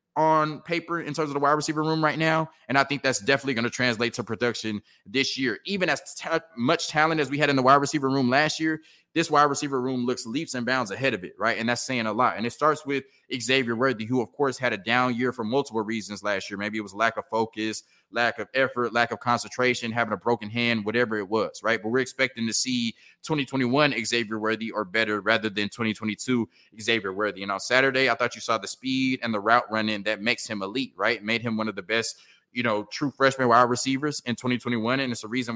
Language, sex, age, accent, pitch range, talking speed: English, male, 20-39, American, 115-135 Hz, 240 wpm